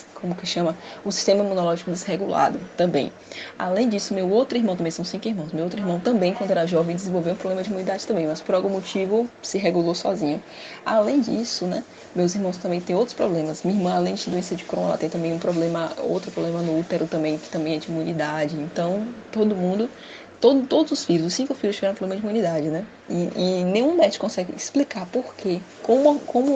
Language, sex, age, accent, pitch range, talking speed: Portuguese, female, 10-29, Brazilian, 165-205 Hz, 210 wpm